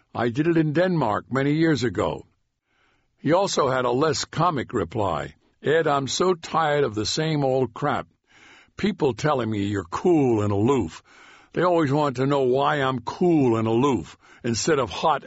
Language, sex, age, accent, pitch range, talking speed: English, male, 60-79, American, 115-155 Hz, 175 wpm